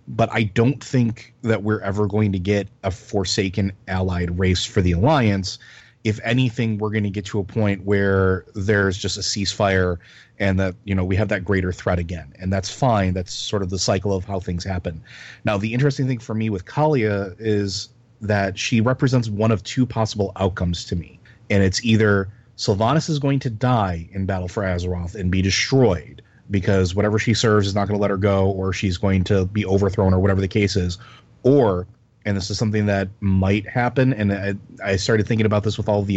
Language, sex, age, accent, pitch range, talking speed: English, male, 30-49, American, 95-115 Hz, 210 wpm